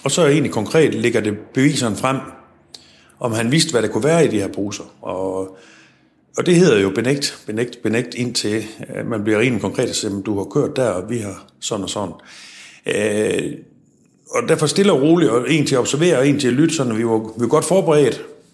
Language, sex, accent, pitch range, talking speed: Danish, male, native, 105-150 Hz, 205 wpm